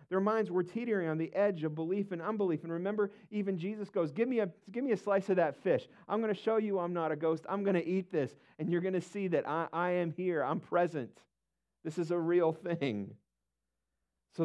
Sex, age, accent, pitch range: male, 50-69, American, 150-200 Hz